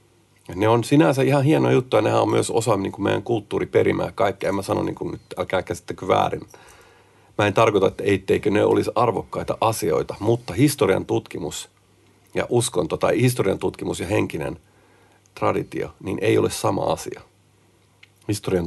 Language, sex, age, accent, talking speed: Finnish, male, 50-69, native, 160 wpm